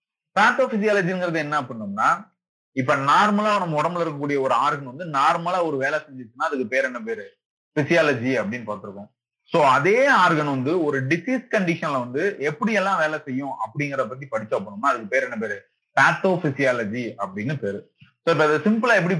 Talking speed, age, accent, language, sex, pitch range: 155 wpm, 30-49, native, Tamil, male, 130-180 Hz